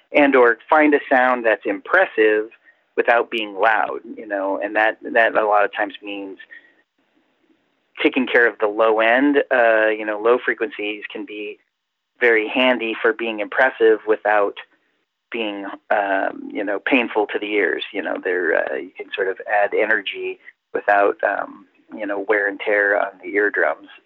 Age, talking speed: 40-59, 165 wpm